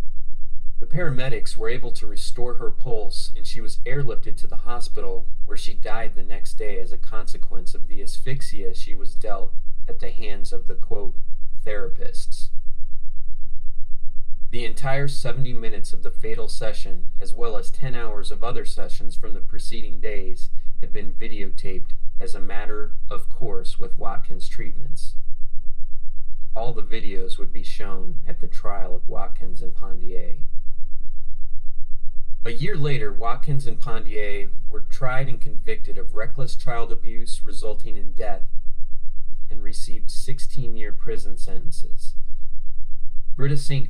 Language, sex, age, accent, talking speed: English, male, 30-49, American, 145 wpm